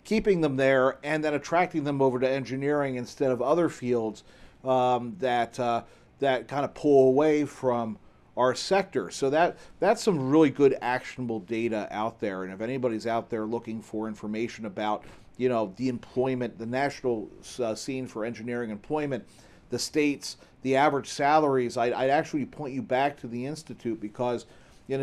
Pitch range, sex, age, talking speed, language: 110-140 Hz, male, 40-59, 170 wpm, English